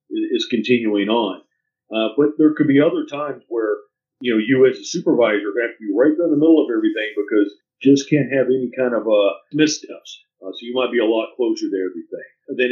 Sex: male